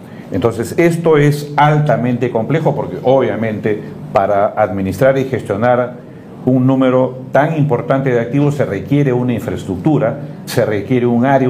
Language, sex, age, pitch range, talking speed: Spanish, male, 50-69, 110-135 Hz, 130 wpm